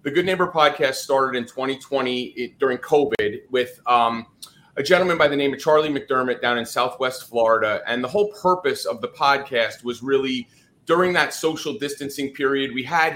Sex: male